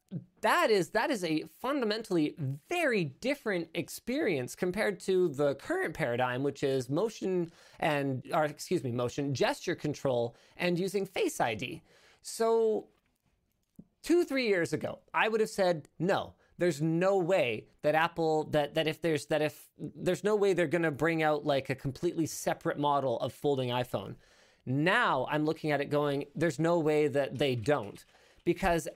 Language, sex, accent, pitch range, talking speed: English, male, American, 145-180 Hz, 160 wpm